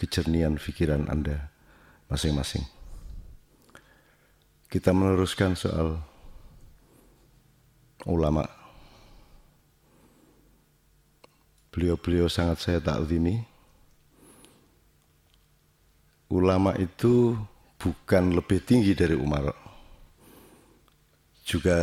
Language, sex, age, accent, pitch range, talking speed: Indonesian, male, 50-69, native, 75-90 Hz, 60 wpm